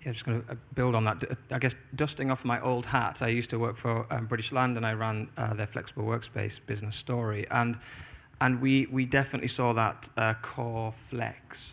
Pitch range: 110-125 Hz